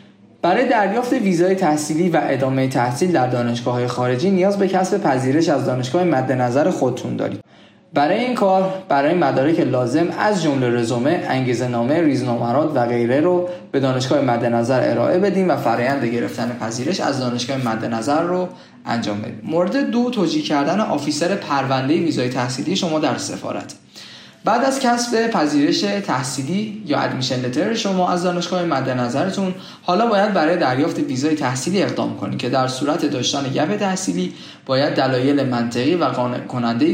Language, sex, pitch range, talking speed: Persian, male, 130-180 Hz, 150 wpm